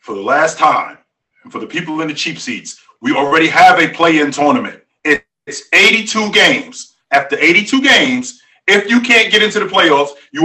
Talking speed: 185 wpm